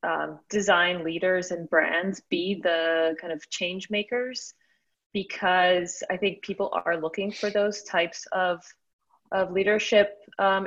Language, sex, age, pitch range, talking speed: English, female, 30-49, 170-210 Hz, 135 wpm